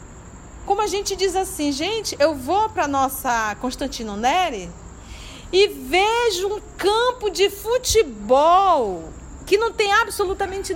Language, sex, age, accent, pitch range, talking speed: Portuguese, female, 50-69, Brazilian, 305-400 Hz, 130 wpm